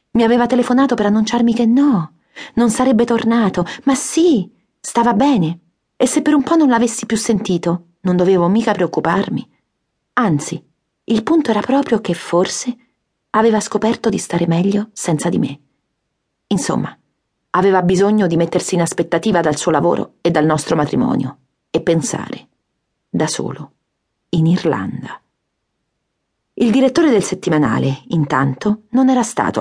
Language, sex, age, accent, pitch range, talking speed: Italian, female, 40-59, native, 165-235 Hz, 140 wpm